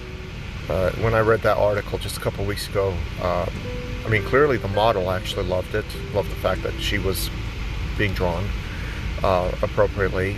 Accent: American